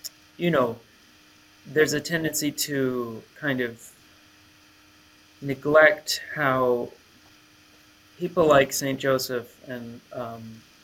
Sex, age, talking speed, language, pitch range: male, 30-49, 90 wpm, English, 120-140 Hz